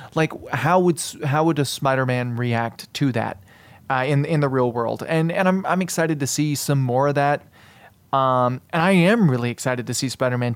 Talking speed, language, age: 205 wpm, English, 30-49